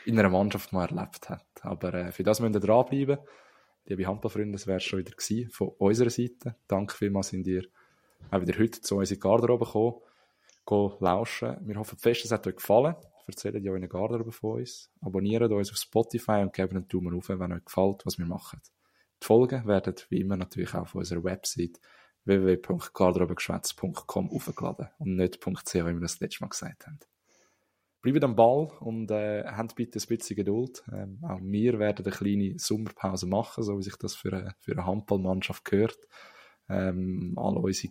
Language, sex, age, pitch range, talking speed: German, male, 20-39, 95-115 Hz, 190 wpm